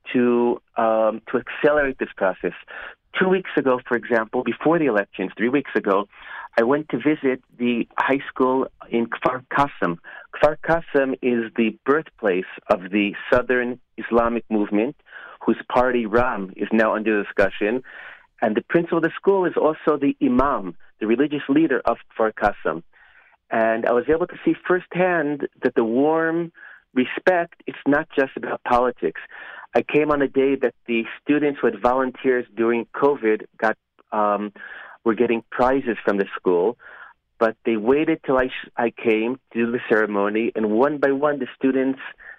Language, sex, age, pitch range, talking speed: English, male, 40-59, 115-140 Hz, 160 wpm